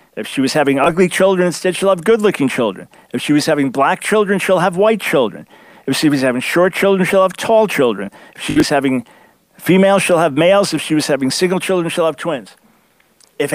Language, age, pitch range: English, 50-69, 150-205 Hz